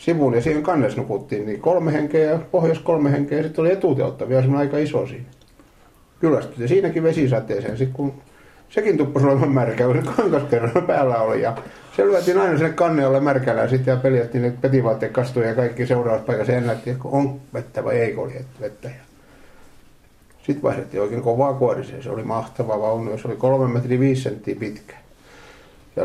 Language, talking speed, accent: Finnish, 160 wpm, native